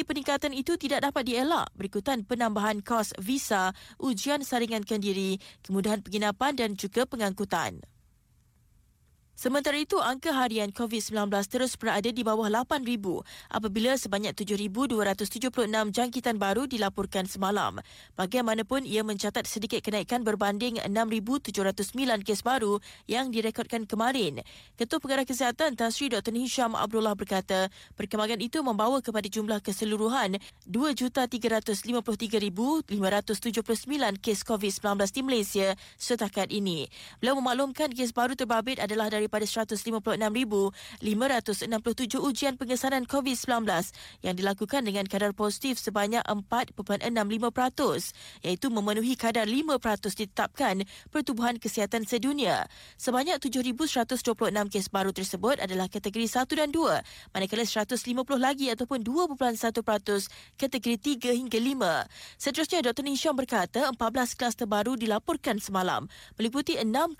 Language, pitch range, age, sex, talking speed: Malay, 210-260 Hz, 20-39, female, 110 wpm